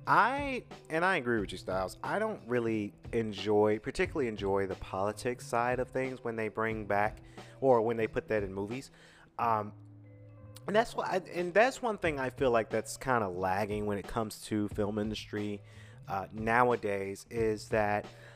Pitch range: 105-140 Hz